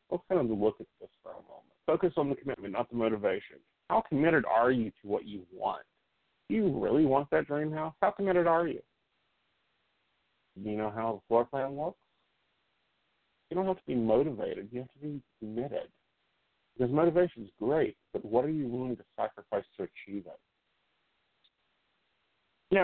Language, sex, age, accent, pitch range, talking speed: English, male, 50-69, American, 115-160 Hz, 185 wpm